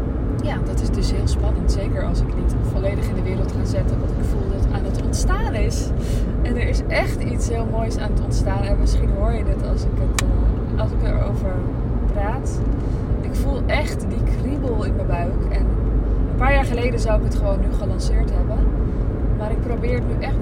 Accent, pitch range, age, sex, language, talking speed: Dutch, 100-115 Hz, 20-39, female, Dutch, 215 wpm